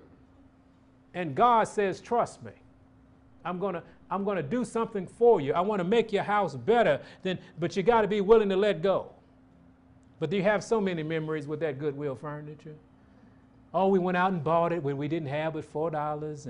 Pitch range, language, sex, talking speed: 150-215 Hz, English, male, 195 wpm